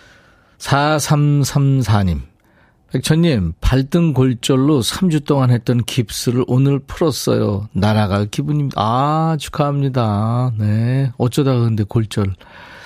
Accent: native